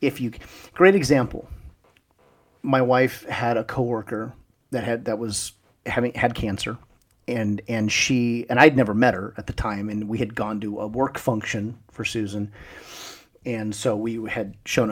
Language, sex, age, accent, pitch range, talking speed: English, male, 40-59, American, 100-125 Hz, 170 wpm